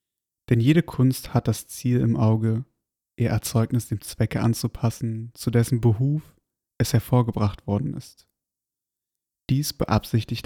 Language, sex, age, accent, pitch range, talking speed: German, male, 30-49, German, 110-125 Hz, 125 wpm